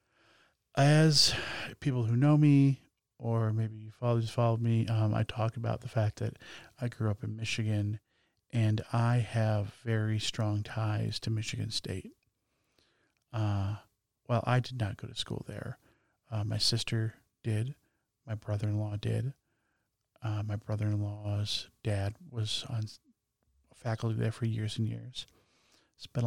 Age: 40-59